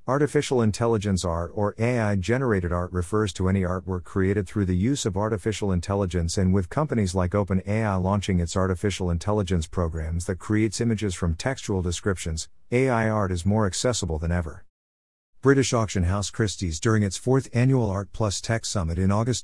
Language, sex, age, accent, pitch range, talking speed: English, male, 50-69, American, 90-115 Hz, 165 wpm